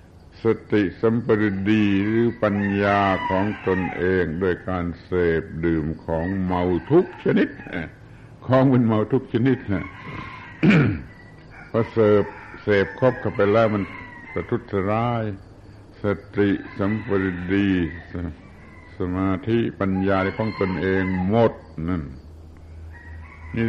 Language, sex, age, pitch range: Thai, male, 70-89, 90-110 Hz